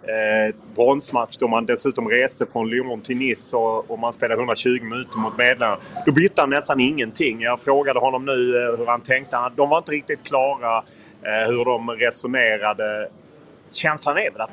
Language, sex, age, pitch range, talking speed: Swedish, male, 30-49, 115-135 Hz, 165 wpm